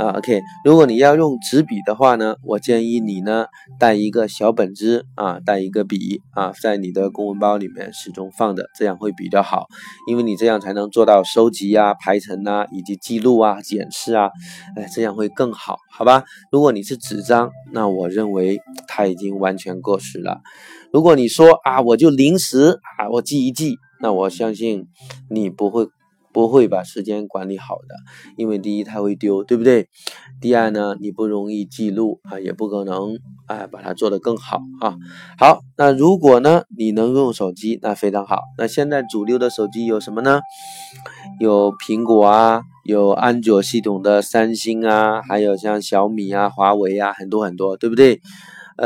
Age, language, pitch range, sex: 20-39, Chinese, 100-120 Hz, male